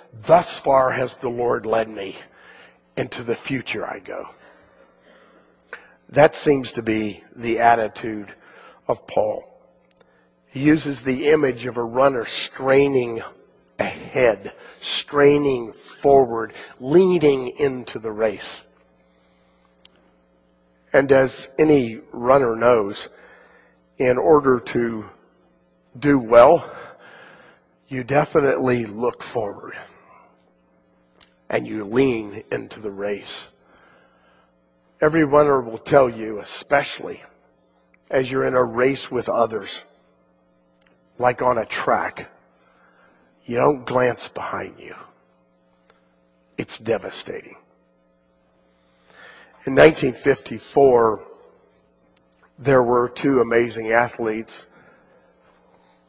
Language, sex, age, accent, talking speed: English, male, 50-69, American, 95 wpm